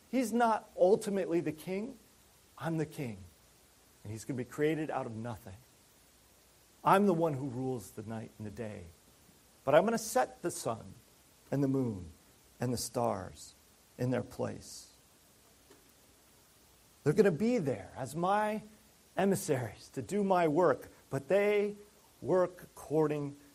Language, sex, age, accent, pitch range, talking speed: English, male, 40-59, American, 120-185 Hz, 150 wpm